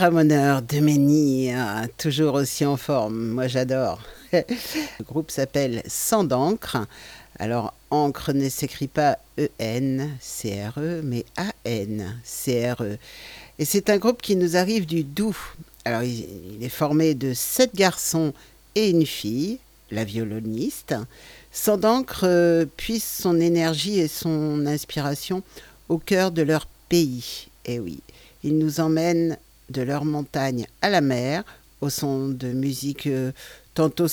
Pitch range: 130-175 Hz